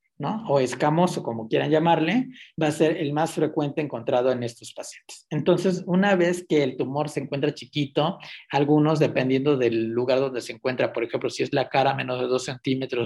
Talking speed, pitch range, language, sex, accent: 195 wpm, 125-155 Hz, Spanish, male, Mexican